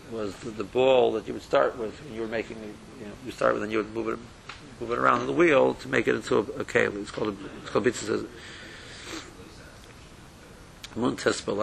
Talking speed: 195 wpm